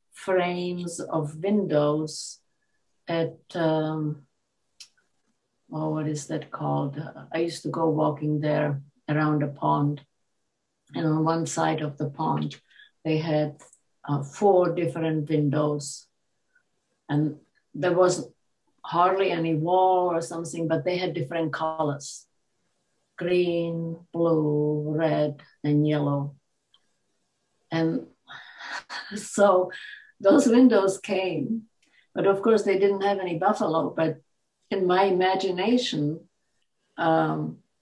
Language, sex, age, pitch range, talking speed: English, female, 50-69, 155-190 Hz, 105 wpm